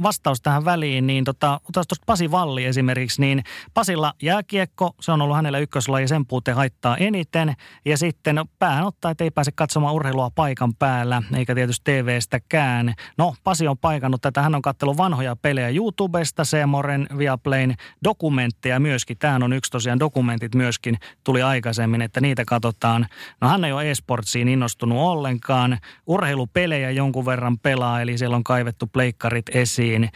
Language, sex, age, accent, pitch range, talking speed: Finnish, male, 30-49, native, 125-155 Hz, 155 wpm